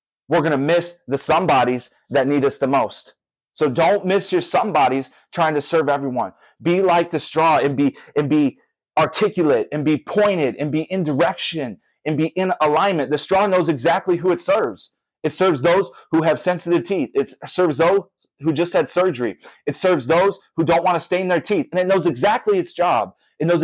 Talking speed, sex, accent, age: 200 wpm, male, American, 30-49